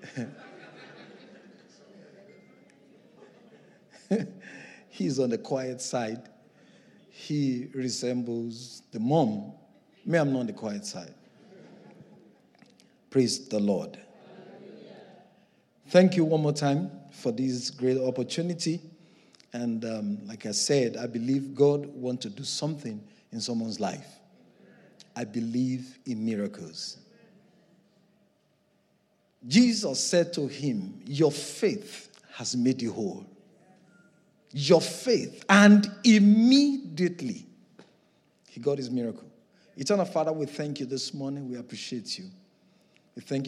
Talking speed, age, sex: 105 wpm, 50-69, male